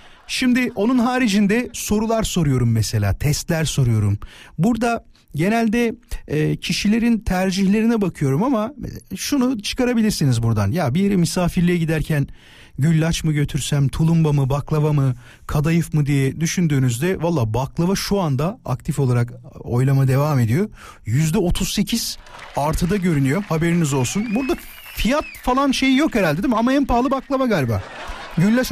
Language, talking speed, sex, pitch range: Turkish, 130 wpm, male, 145-220 Hz